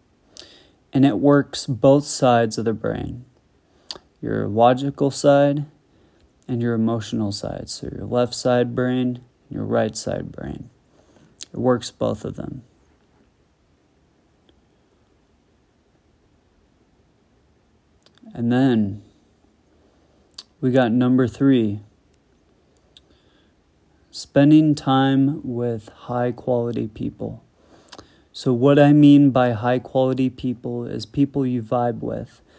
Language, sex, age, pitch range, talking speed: English, male, 30-49, 115-140 Hz, 100 wpm